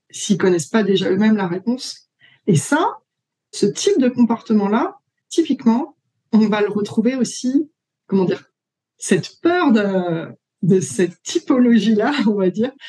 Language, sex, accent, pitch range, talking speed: French, female, French, 195-270 Hz, 145 wpm